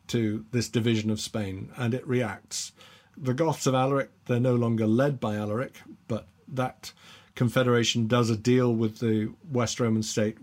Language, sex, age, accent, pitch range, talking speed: English, male, 50-69, British, 105-125 Hz, 165 wpm